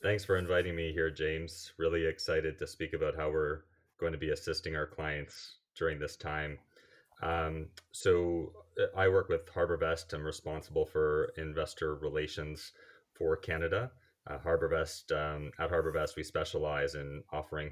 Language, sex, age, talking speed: English, male, 30-49, 145 wpm